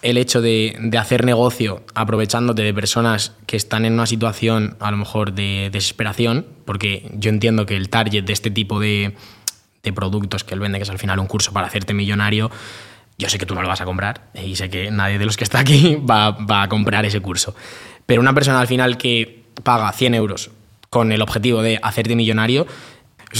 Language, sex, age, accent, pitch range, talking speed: Spanish, male, 20-39, Spanish, 105-125 Hz, 215 wpm